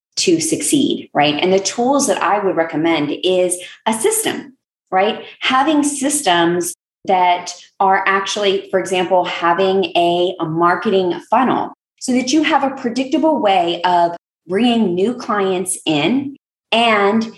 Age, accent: 20-39, American